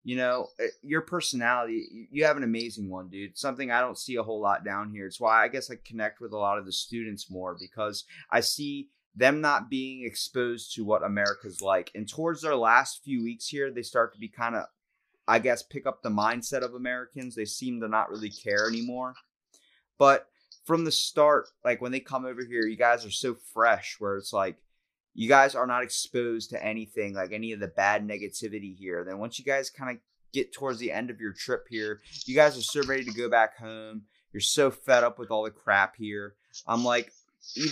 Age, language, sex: 30-49, English, male